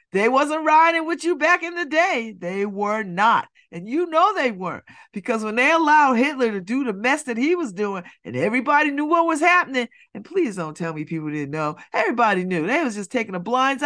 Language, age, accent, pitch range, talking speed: English, 40-59, American, 215-325 Hz, 225 wpm